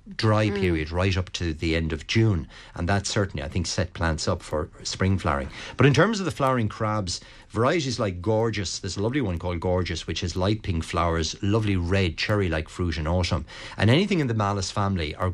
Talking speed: 215 wpm